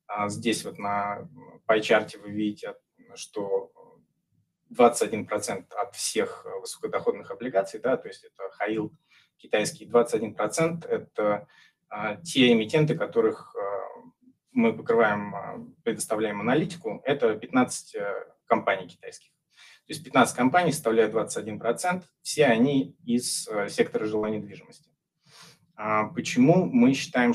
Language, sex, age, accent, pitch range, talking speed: Russian, male, 20-39, native, 110-165 Hz, 100 wpm